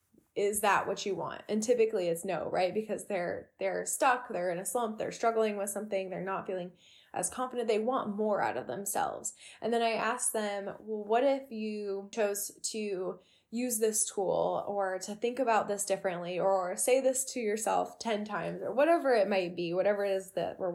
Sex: female